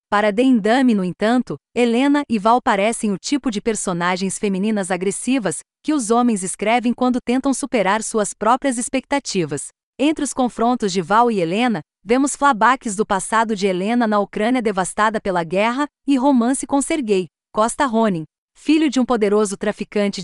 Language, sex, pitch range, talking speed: Portuguese, female, 200-255 Hz, 160 wpm